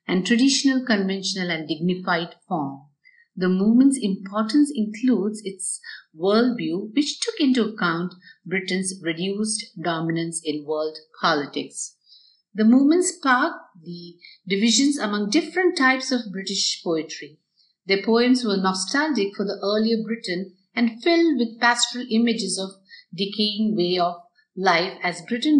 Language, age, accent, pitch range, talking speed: English, 50-69, Indian, 175-245 Hz, 125 wpm